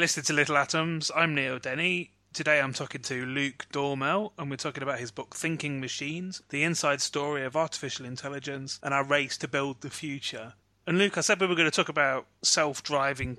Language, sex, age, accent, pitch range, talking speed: English, male, 30-49, British, 130-160 Hz, 205 wpm